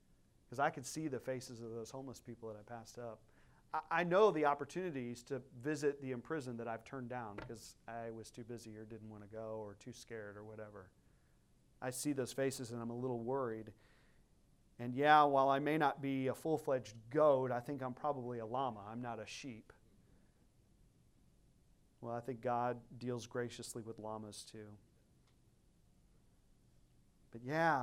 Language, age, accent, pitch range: English, 40-59, American, 115-145 Hz